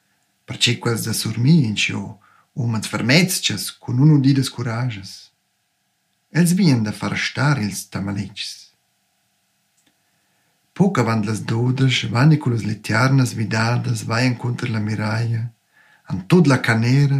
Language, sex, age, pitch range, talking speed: Italian, male, 50-69, 115-145 Hz, 120 wpm